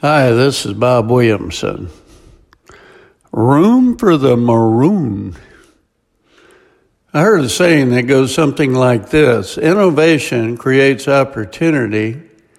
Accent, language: American, English